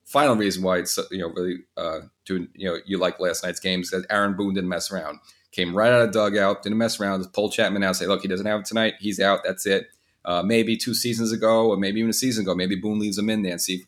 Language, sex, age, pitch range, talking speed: English, male, 30-49, 95-105 Hz, 280 wpm